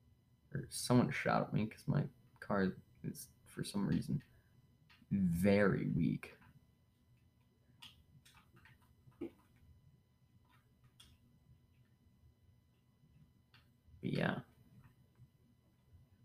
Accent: American